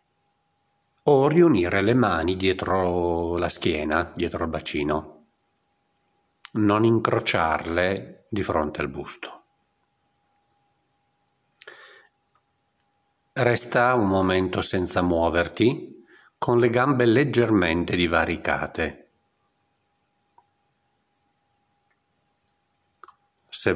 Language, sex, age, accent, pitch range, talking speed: Italian, male, 50-69, native, 80-115 Hz, 70 wpm